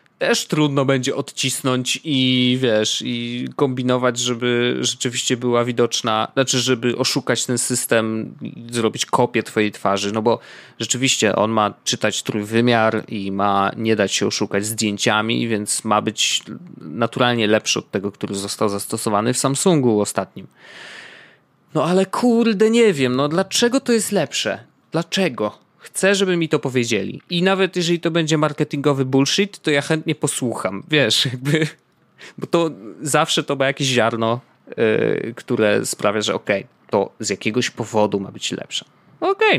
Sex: male